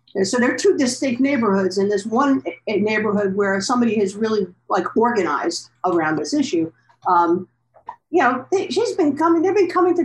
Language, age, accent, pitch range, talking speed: English, 50-69, American, 195-275 Hz, 175 wpm